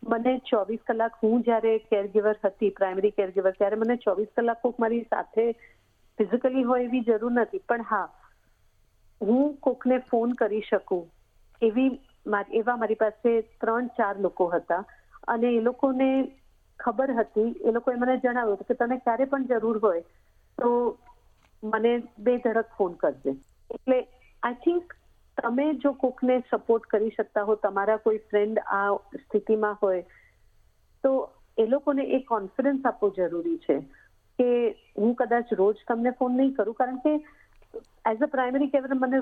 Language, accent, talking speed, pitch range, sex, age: Gujarati, native, 145 wpm, 210-255 Hz, female, 50-69